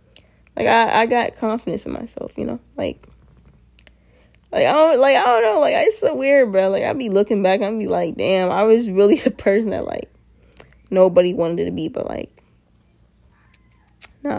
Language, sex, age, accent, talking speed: English, female, 10-29, American, 190 wpm